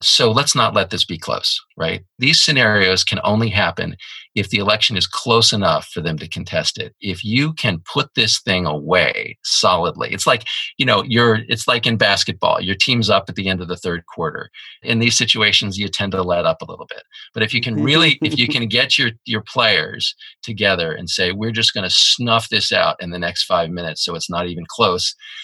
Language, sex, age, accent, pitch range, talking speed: English, male, 40-59, American, 95-120 Hz, 220 wpm